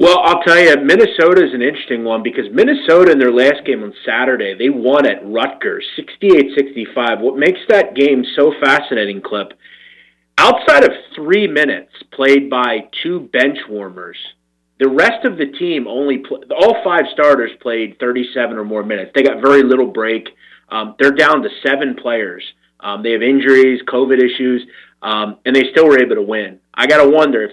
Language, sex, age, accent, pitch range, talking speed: English, male, 30-49, American, 115-150 Hz, 180 wpm